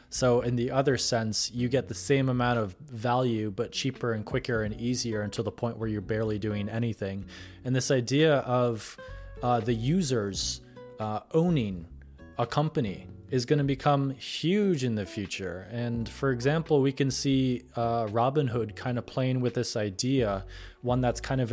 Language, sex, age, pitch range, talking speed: English, male, 20-39, 115-130 Hz, 180 wpm